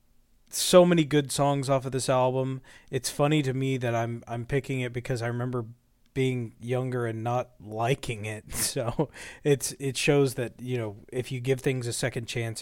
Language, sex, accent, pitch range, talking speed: English, male, American, 115-140 Hz, 190 wpm